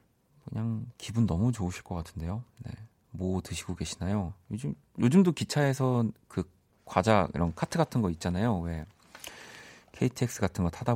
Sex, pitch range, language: male, 90-120 Hz, Korean